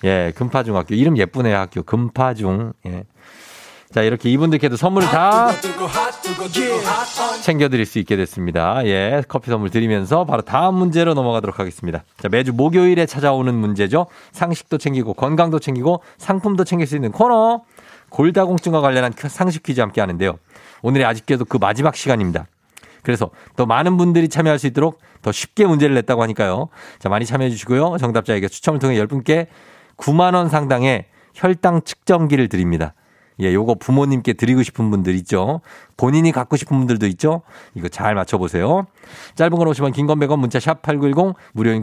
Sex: male